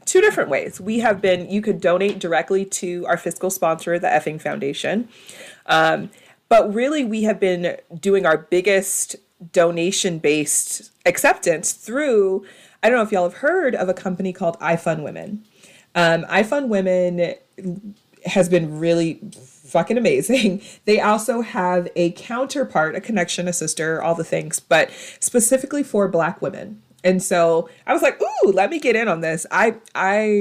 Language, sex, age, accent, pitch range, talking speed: English, female, 30-49, American, 170-210 Hz, 160 wpm